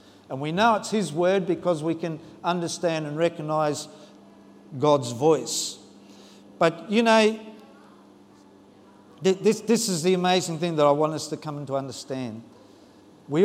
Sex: male